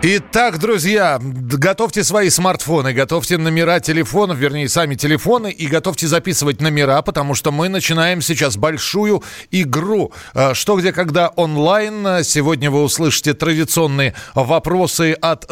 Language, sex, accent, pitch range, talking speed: Russian, male, native, 150-185 Hz, 125 wpm